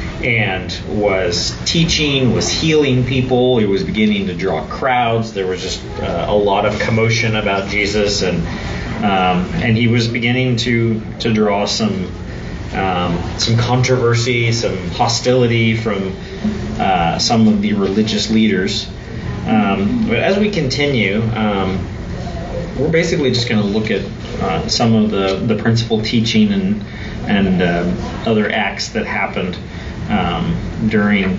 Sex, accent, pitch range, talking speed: male, American, 95-115 Hz, 140 wpm